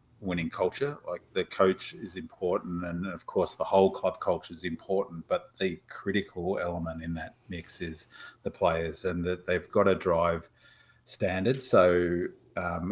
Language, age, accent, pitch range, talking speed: English, 40-59, Australian, 85-95 Hz, 165 wpm